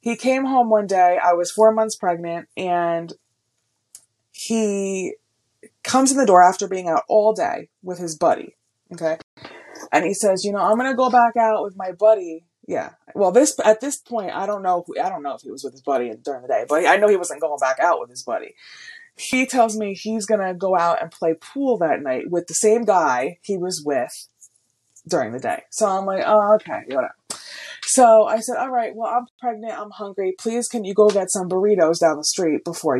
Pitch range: 175-230 Hz